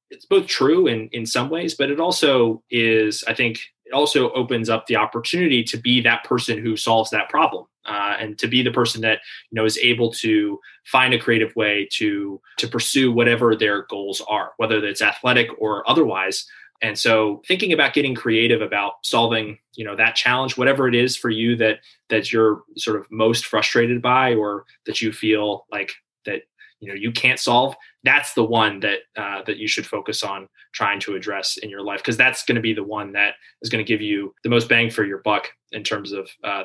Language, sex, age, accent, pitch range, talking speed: English, male, 20-39, American, 110-125 Hz, 215 wpm